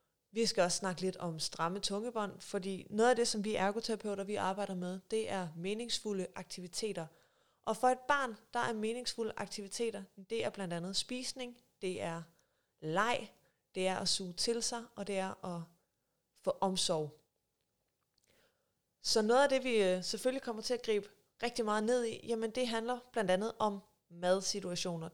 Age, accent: 30-49, native